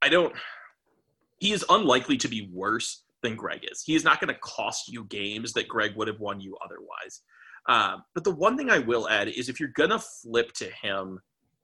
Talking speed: 220 wpm